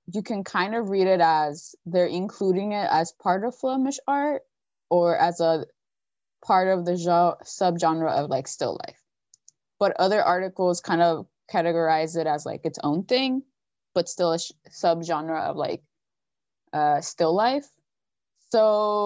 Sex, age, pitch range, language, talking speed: female, 20-39, 160-200 Hz, English, 150 wpm